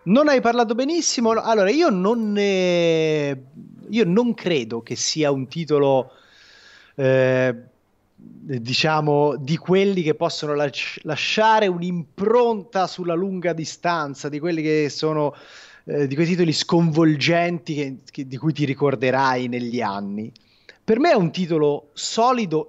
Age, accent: 30-49, native